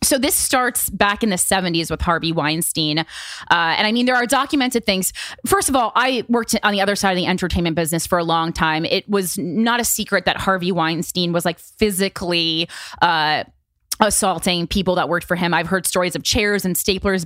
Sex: female